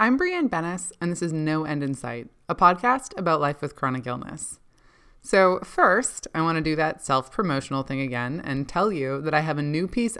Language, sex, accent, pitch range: English, female, American, 135-185 Hz